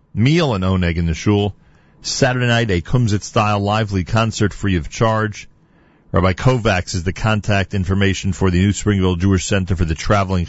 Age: 40-59